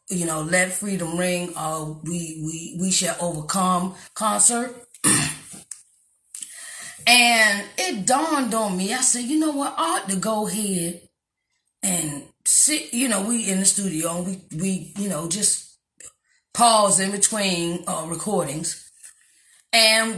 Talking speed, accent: 135 wpm, American